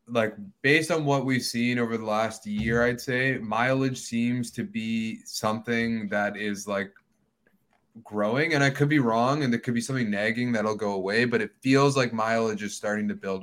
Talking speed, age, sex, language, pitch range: 195 wpm, 20-39, male, English, 105-130 Hz